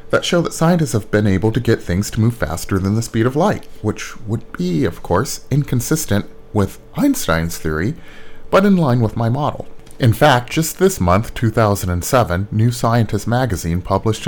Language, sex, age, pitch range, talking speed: English, male, 30-49, 90-125 Hz, 180 wpm